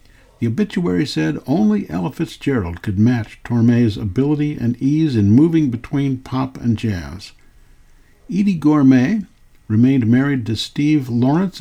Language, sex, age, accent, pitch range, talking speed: English, male, 60-79, American, 110-150 Hz, 130 wpm